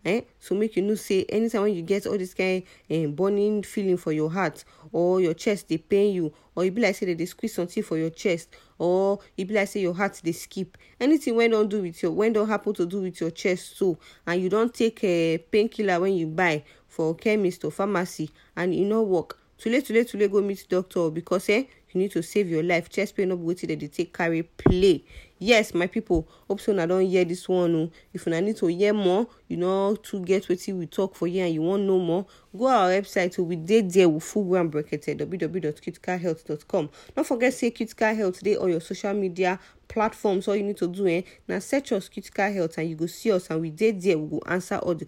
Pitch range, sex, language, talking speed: 165-205 Hz, female, English, 245 wpm